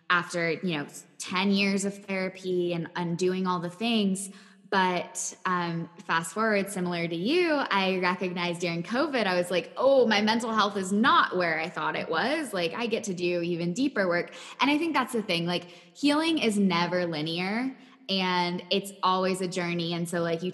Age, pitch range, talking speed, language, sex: 10-29, 175-200 Hz, 190 wpm, English, female